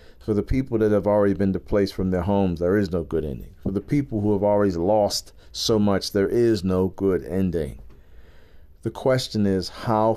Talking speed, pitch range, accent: 200 wpm, 85-105 Hz, American